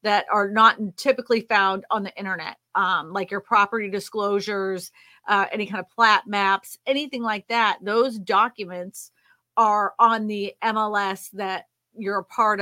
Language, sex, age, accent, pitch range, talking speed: English, female, 30-49, American, 190-240 Hz, 150 wpm